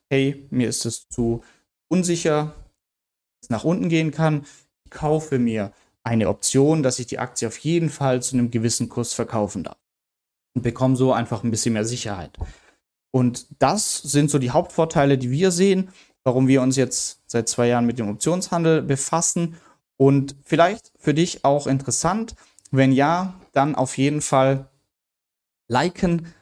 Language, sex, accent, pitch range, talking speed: German, male, German, 120-155 Hz, 160 wpm